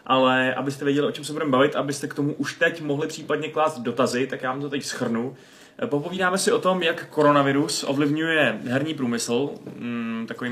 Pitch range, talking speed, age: 115-145 Hz, 195 wpm, 20-39